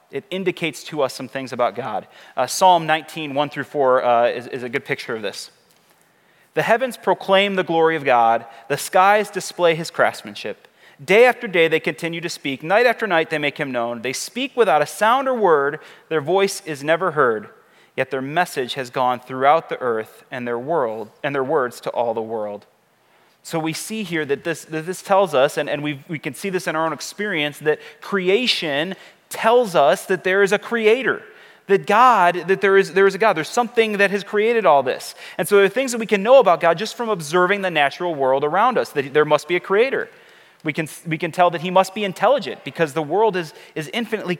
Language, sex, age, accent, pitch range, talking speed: English, male, 30-49, American, 150-200 Hz, 225 wpm